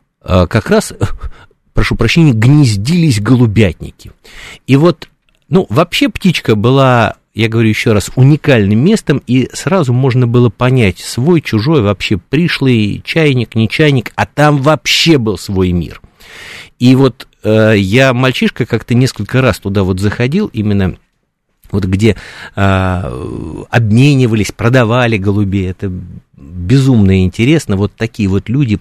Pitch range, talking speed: 100-135 Hz, 125 wpm